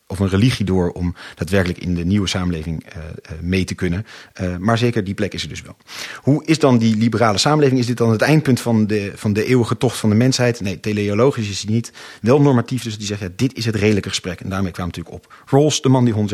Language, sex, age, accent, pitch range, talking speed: Dutch, male, 40-59, Dutch, 90-115 Hz, 255 wpm